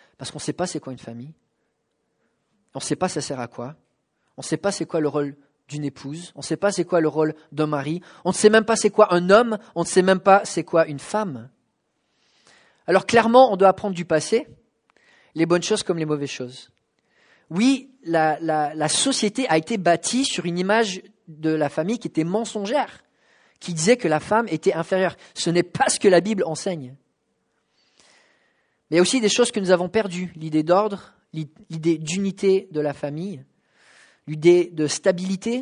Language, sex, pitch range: English, male, 155-200 Hz